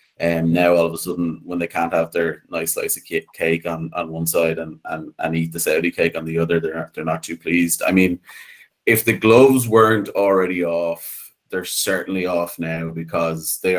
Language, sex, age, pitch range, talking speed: English, male, 20-39, 80-90 Hz, 215 wpm